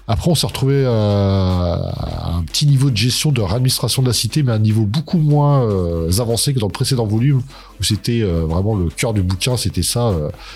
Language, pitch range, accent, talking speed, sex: French, 100-125 Hz, French, 220 wpm, male